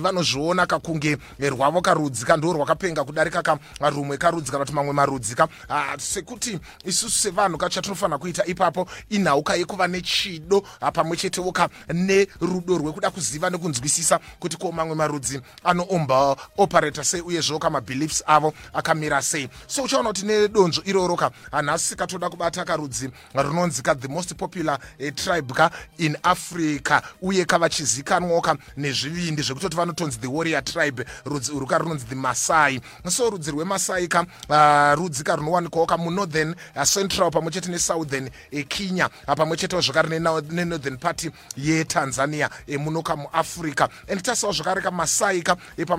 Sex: male